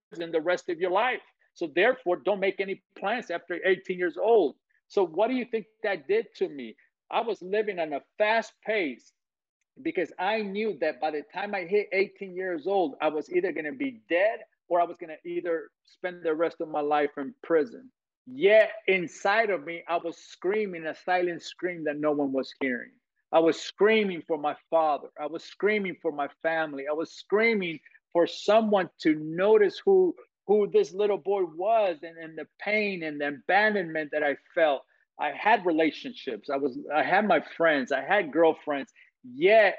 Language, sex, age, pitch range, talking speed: English, male, 50-69, 160-220 Hz, 195 wpm